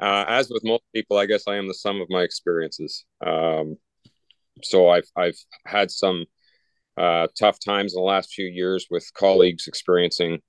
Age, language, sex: 40-59, English, male